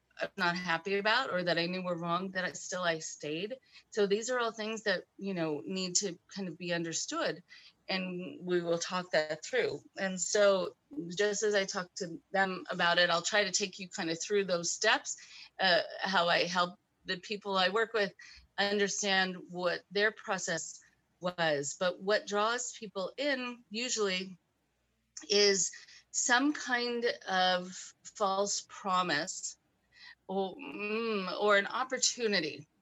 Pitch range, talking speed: 170-205 Hz, 155 wpm